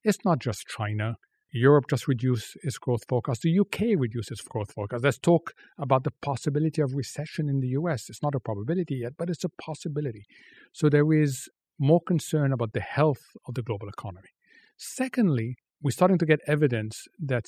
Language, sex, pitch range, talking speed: English, male, 120-160 Hz, 185 wpm